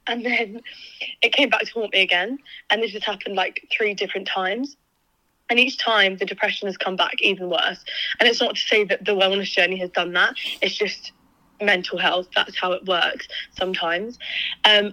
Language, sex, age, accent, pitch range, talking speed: English, female, 20-39, British, 185-220 Hz, 195 wpm